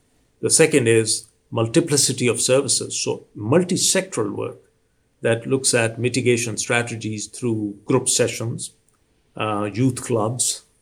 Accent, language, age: Indian, English, 50-69